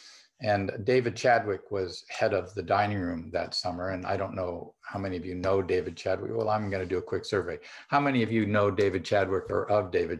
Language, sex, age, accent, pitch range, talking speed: English, male, 50-69, American, 90-110 Hz, 230 wpm